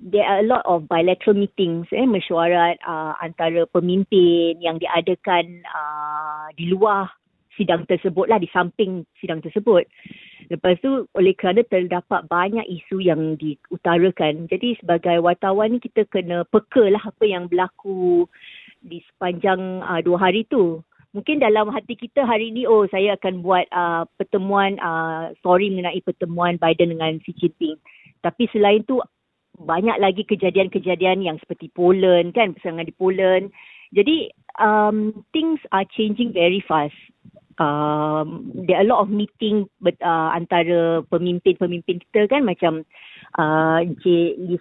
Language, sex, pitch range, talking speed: Malay, female, 170-200 Hz, 145 wpm